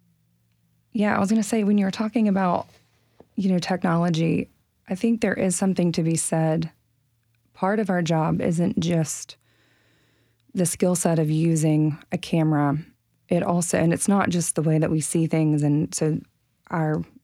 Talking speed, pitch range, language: 175 wpm, 150-180 Hz, English